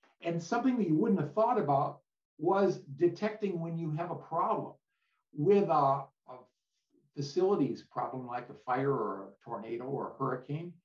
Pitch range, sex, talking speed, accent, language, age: 130-170 Hz, male, 160 wpm, American, English, 50-69